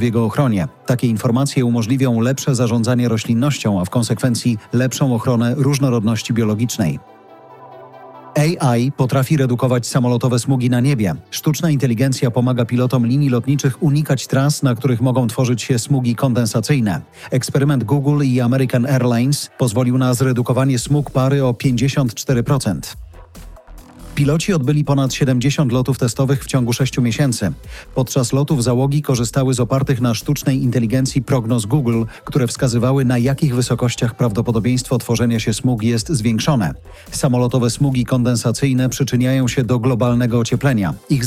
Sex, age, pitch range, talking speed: male, 40-59, 120-135 Hz, 130 wpm